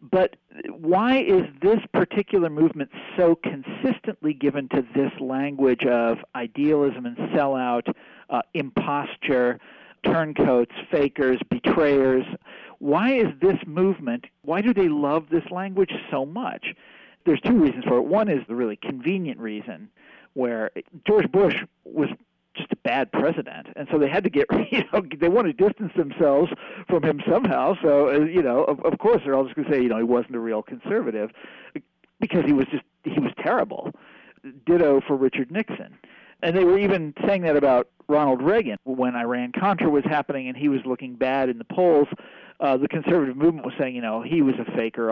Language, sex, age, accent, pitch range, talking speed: English, male, 50-69, American, 125-185 Hz, 175 wpm